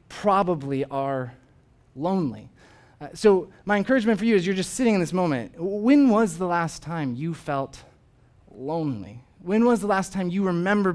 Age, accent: 20-39, American